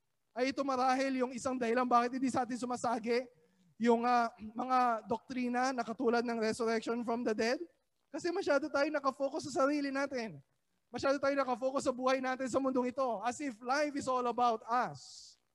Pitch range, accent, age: 245-275 Hz, native, 20-39